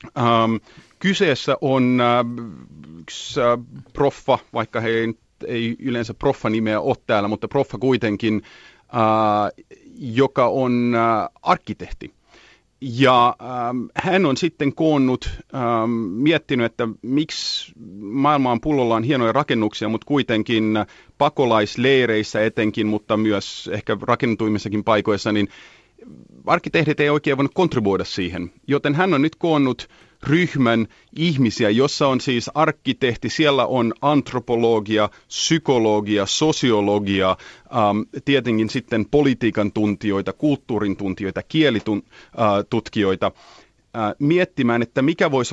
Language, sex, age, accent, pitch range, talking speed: Finnish, male, 30-49, native, 105-135 Hz, 100 wpm